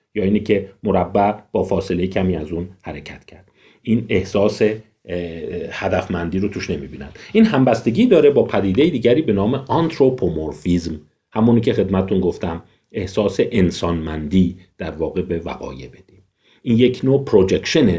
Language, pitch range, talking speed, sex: Persian, 95-130 Hz, 135 wpm, male